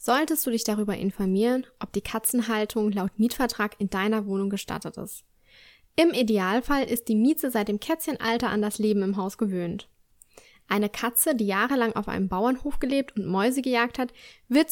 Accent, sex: German, female